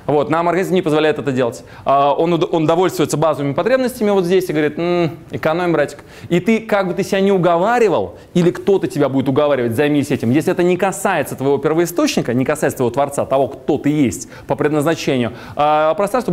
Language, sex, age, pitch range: Russian, male, 20-39, 140-185 Hz